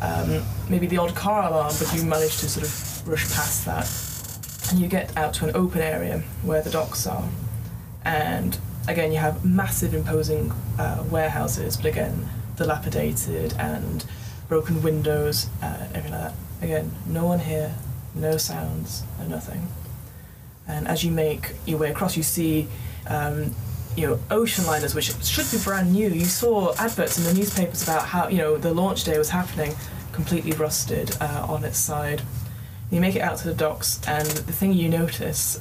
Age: 10-29